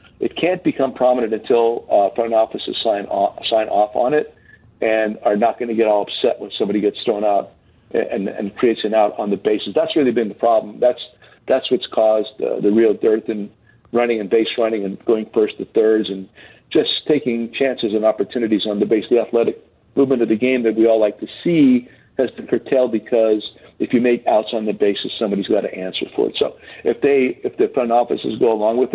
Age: 50-69